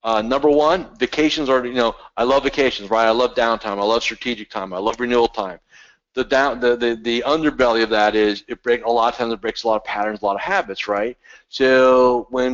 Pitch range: 115-150 Hz